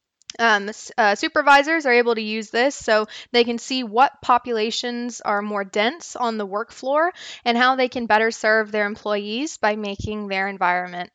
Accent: American